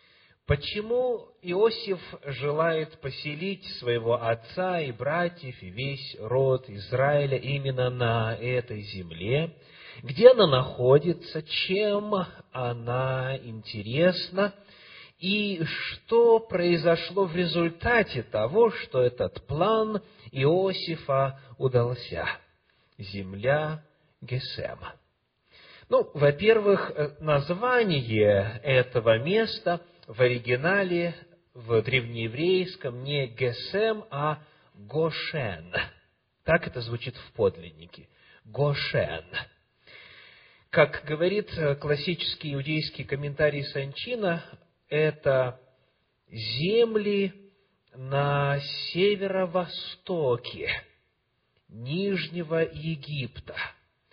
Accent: native